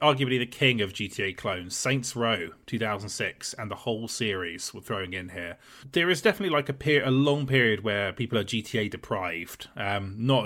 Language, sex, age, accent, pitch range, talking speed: English, male, 30-49, British, 100-130 Hz, 185 wpm